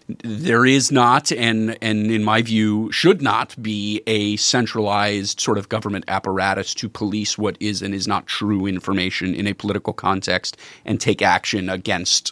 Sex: male